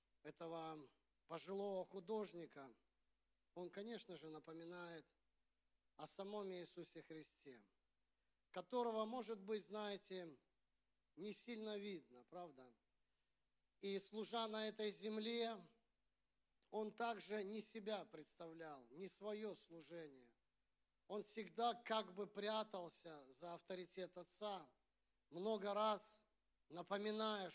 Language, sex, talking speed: Russian, male, 95 wpm